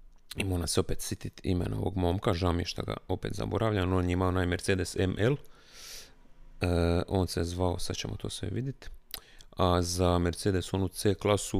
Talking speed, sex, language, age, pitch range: 185 wpm, male, Croatian, 30-49, 90-100 Hz